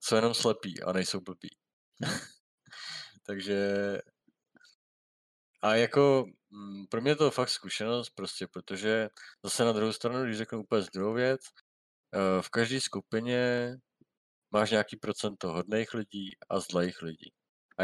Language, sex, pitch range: Czech, male, 85-105 Hz